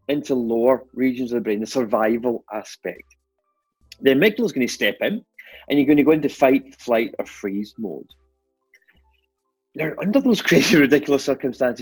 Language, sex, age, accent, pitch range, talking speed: English, male, 30-49, British, 105-135 Hz, 160 wpm